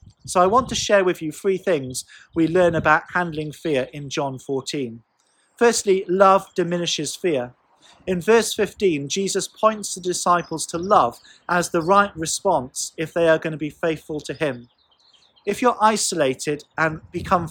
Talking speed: 165 wpm